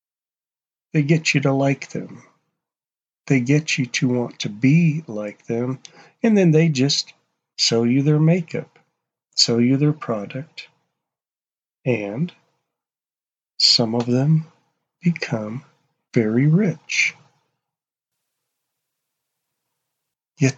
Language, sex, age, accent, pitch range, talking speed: English, male, 50-69, American, 120-160 Hz, 100 wpm